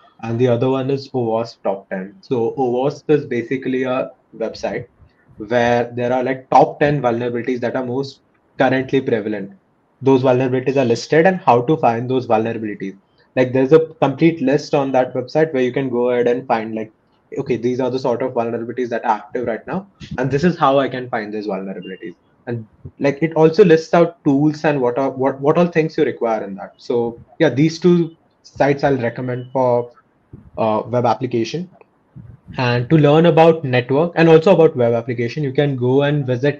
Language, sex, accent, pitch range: Hindi, male, native, 120-145 Hz